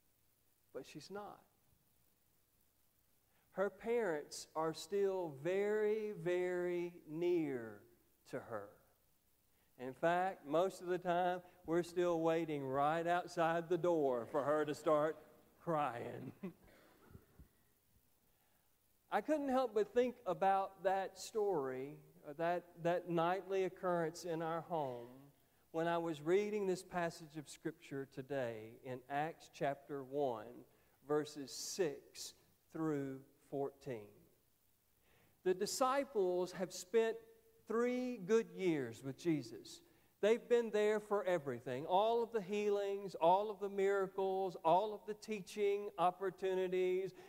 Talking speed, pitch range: 115 wpm, 155-200 Hz